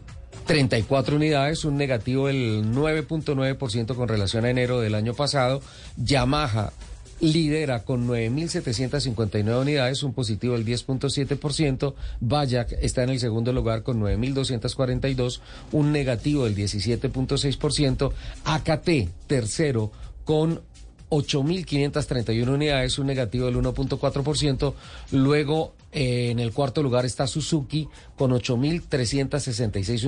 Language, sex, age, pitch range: Spanish, male, 40-59, 125-145 Hz